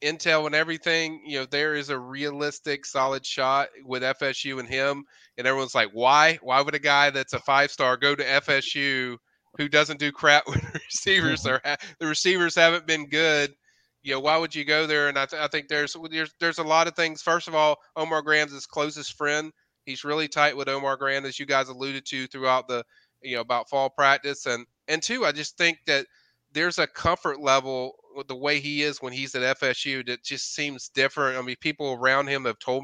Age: 30-49